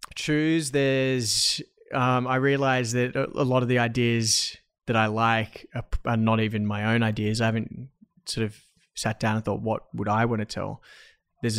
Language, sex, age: English, male, 20-39